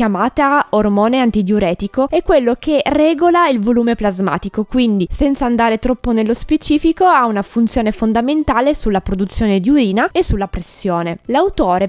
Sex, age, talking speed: female, 20-39, 135 wpm